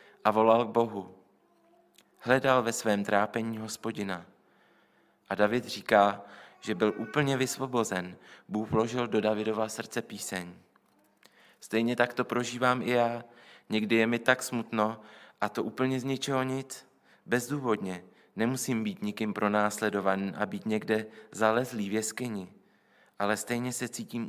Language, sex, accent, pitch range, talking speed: Czech, male, native, 105-120 Hz, 135 wpm